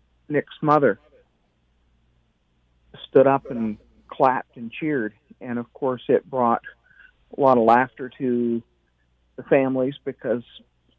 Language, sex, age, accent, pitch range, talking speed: English, male, 40-59, American, 115-145 Hz, 115 wpm